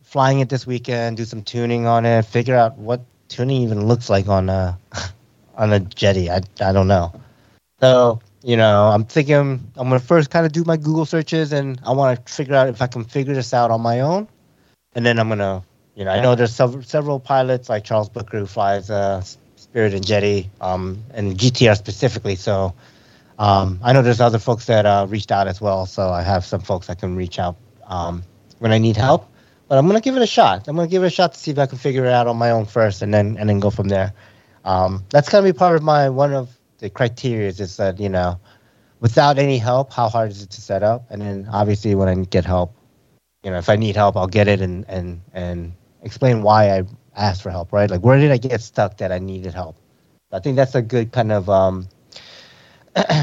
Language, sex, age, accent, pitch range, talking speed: English, male, 30-49, Japanese, 100-130 Hz, 240 wpm